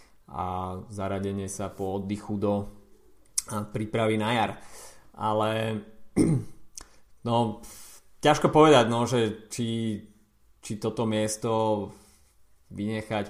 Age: 20-39